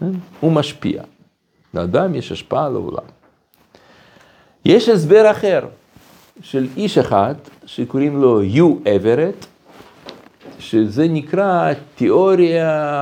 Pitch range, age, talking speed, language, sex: 105-150 Hz, 60-79, 90 wpm, Hebrew, male